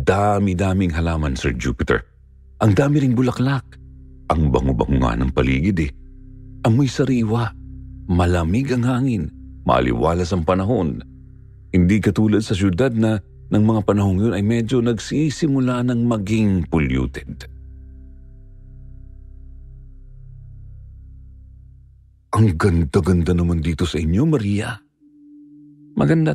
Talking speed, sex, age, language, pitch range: 100 wpm, male, 50-69, Filipino, 75-125 Hz